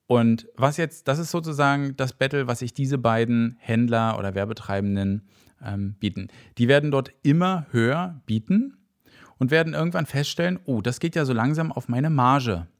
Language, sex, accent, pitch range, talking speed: German, male, German, 110-140 Hz, 170 wpm